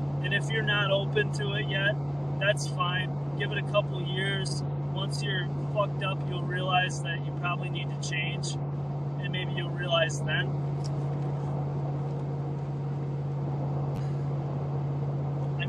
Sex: male